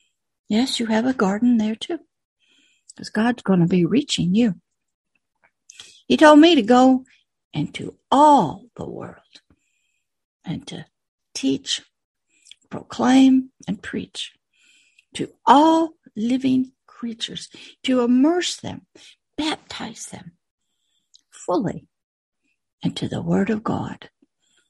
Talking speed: 105 wpm